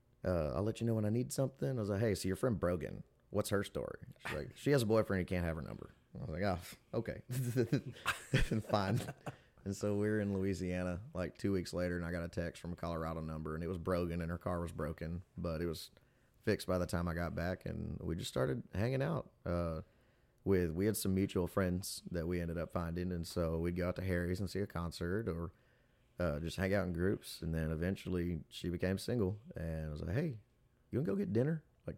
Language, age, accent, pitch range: English, 30-49, American, 85-100 Hz